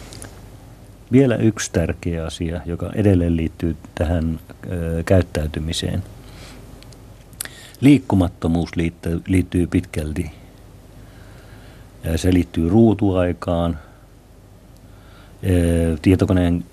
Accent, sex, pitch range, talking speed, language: native, male, 85-105 Hz, 60 wpm, Finnish